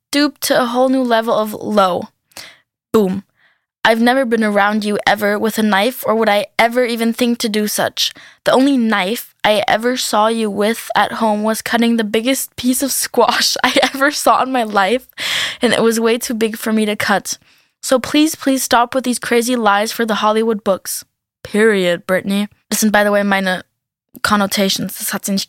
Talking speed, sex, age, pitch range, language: 190 wpm, female, 10-29, 210-240 Hz, German